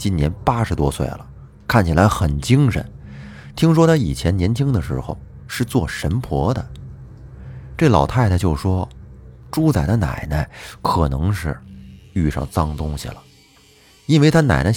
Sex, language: male, Chinese